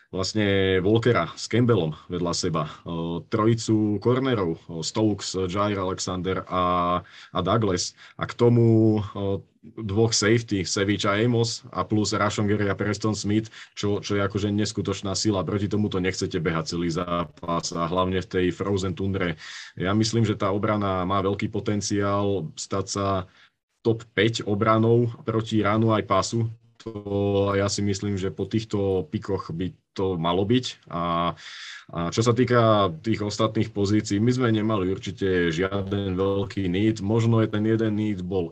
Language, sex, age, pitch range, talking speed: Czech, male, 30-49, 95-110 Hz, 150 wpm